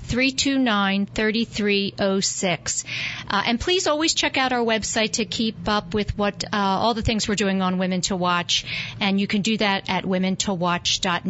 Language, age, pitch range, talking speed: English, 50-69, 195-230 Hz, 165 wpm